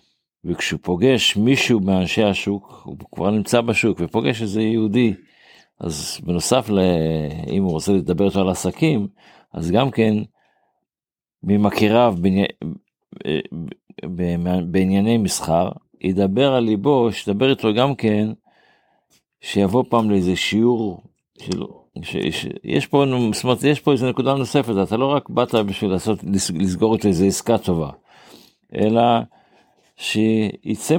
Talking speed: 115 wpm